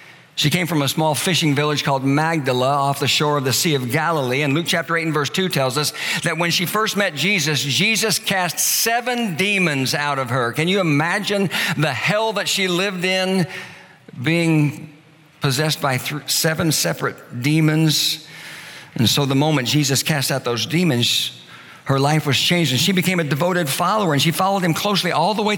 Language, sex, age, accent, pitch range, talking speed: English, male, 50-69, American, 140-185 Hz, 190 wpm